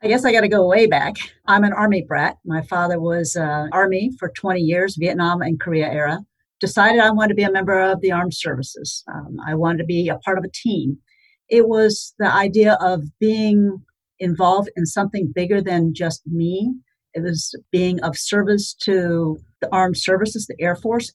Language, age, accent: English, 50-69, American